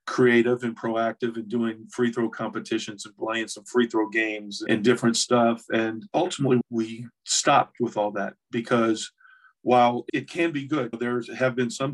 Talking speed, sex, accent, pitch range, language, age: 170 wpm, male, American, 110-125 Hz, English, 50-69